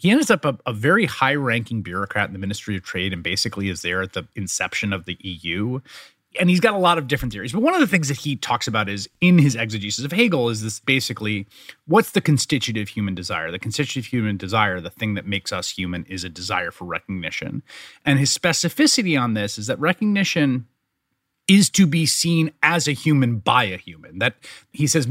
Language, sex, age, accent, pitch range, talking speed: English, male, 30-49, American, 105-155 Hz, 215 wpm